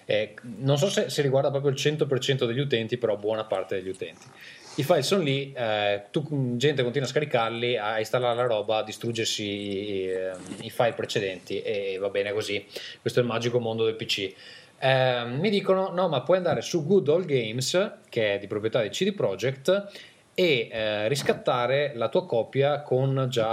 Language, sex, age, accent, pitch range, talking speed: Italian, male, 20-39, native, 110-150 Hz, 185 wpm